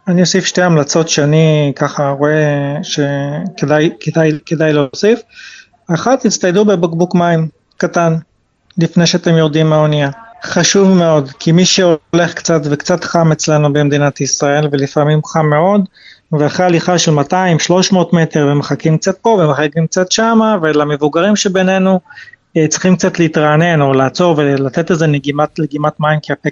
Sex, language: male, Hebrew